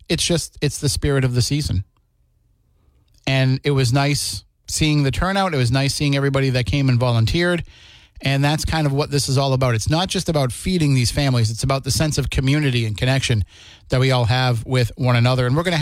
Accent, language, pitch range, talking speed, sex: American, English, 120-145 Hz, 225 wpm, male